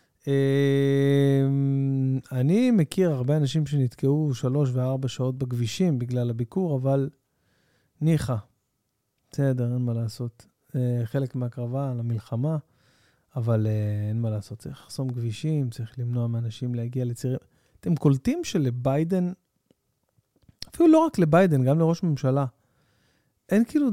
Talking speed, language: 110 wpm, Hebrew